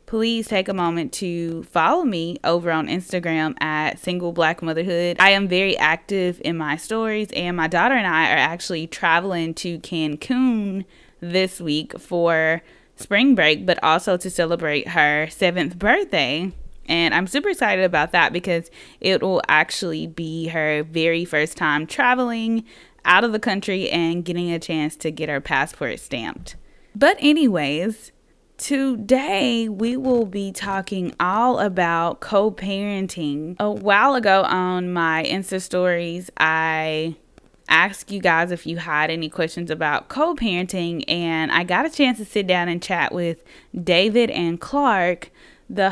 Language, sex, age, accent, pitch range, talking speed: English, female, 20-39, American, 165-205 Hz, 150 wpm